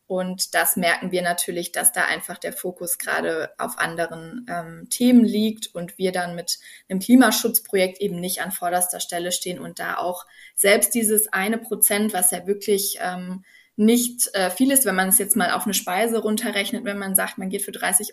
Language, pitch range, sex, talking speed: German, 185-225 Hz, female, 195 wpm